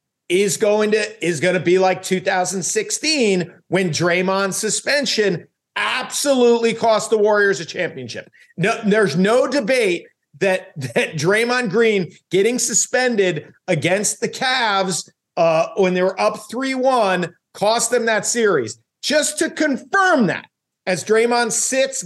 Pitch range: 180-225 Hz